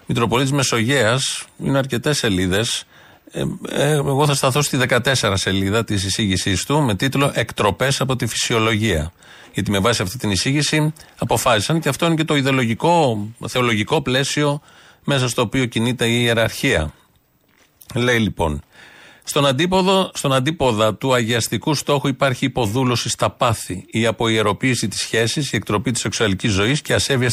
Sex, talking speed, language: male, 145 wpm, Greek